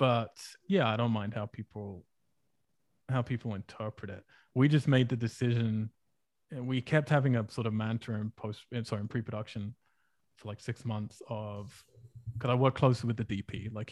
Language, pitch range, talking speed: English, 110-125 Hz, 180 wpm